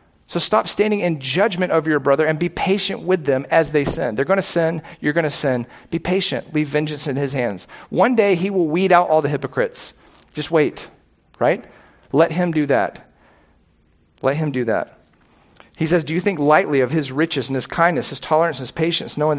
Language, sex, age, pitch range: English, male, 40-59, 150-180 Hz